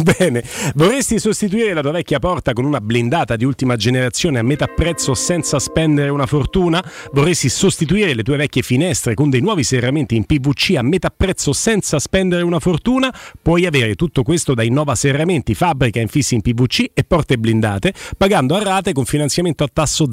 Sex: male